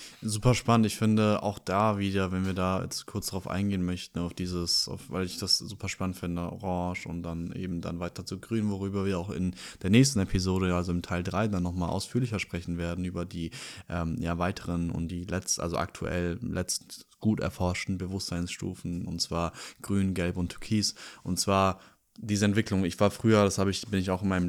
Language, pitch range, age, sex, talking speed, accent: German, 90-105 Hz, 20-39, male, 205 wpm, German